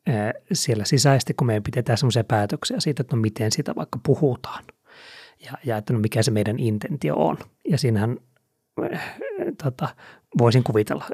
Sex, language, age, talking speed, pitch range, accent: male, Finnish, 30-49, 150 wpm, 110-145 Hz, native